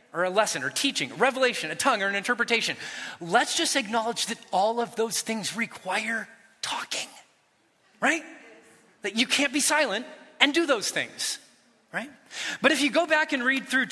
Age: 30-49